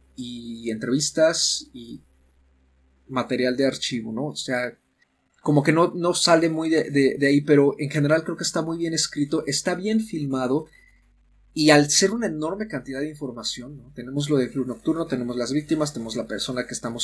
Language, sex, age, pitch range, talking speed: Spanish, male, 30-49, 115-145 Hz, 185 wpm